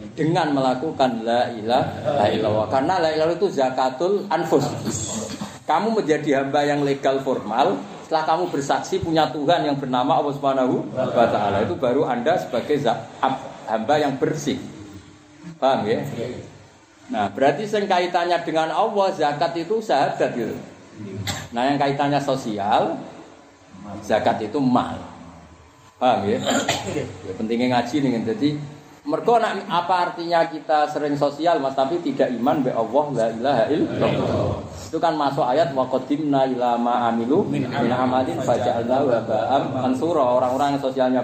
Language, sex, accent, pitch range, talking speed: Indonesian, male, native, 125-160 Hz, 120 wpm